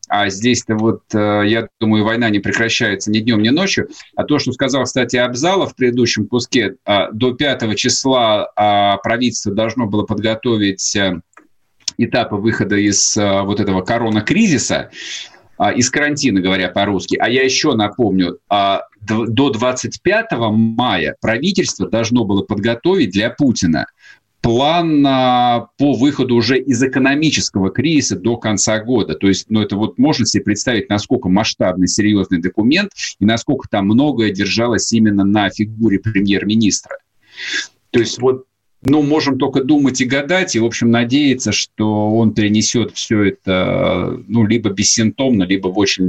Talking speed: 140 wpm